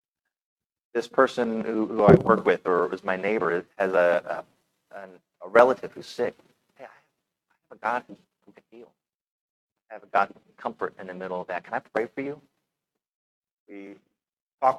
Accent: American